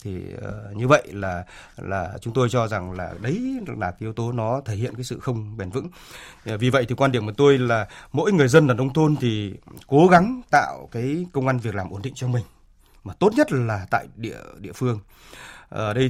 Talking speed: 225 wpm